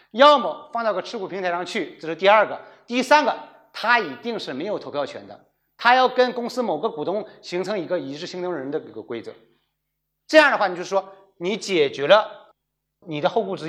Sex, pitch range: male, 170-245 Hz